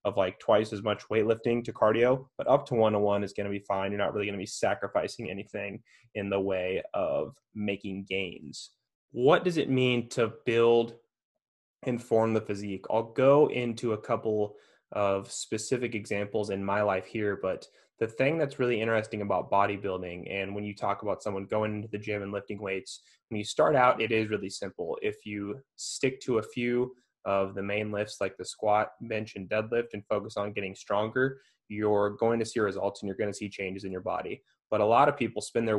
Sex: male